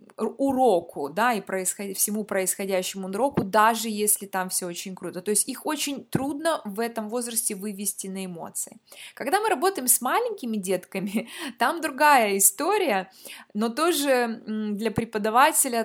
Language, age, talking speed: Russian, 20-39, 135 wpm